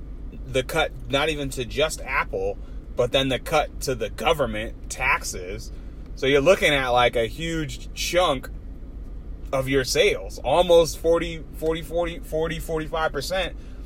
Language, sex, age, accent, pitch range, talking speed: English, male, 30-49, American, 110-150 Hz, 145 wpm